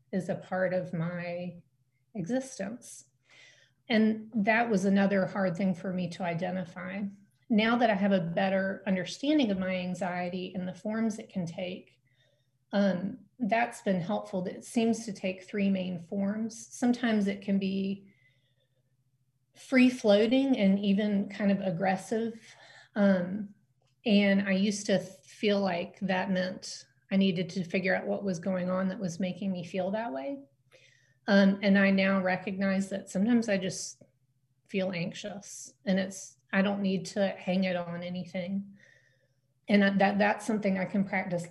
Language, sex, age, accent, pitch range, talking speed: English, female, 30-49, American, 180-200 Hz, 155 wpm